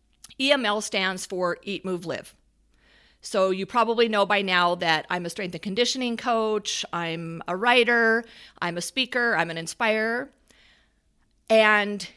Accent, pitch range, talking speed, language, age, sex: American, 195-240 Hz, 145 wpm, English, 40-59, female